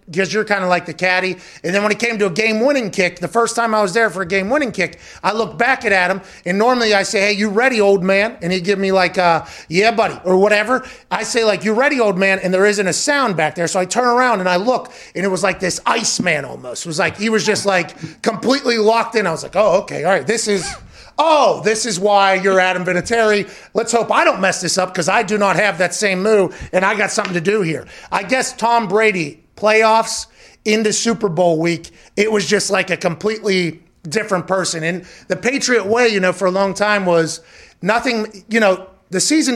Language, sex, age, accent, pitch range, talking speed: English, male, 30-49, American, 185-220 Hz, 240 wpm